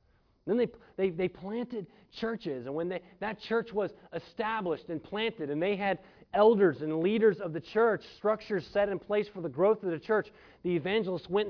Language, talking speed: English, 195 wpm